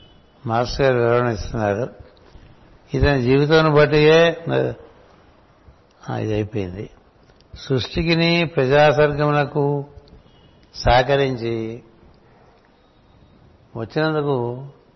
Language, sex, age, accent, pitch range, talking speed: Telugu, male, 60-79, native, 125-150 Hz, 50 wpm